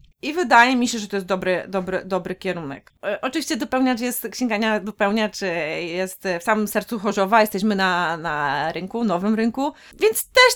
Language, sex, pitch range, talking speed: Polish, female, 190-240 Hz, 170 wpm